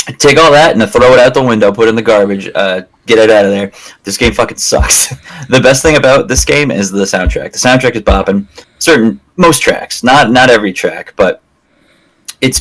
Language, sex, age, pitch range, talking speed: English, male, 20-39, 95-125 Hz, 220 wpm